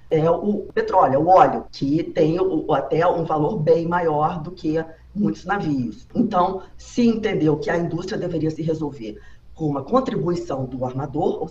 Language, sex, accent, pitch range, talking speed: Portuguese, female, Brazilian, 155-200 Hz, 160 wpm